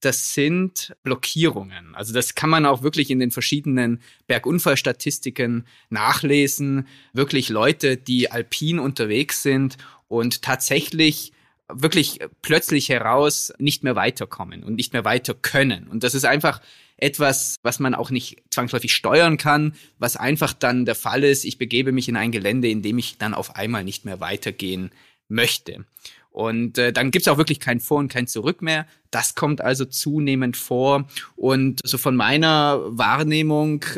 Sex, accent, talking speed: male, German, 155 wpm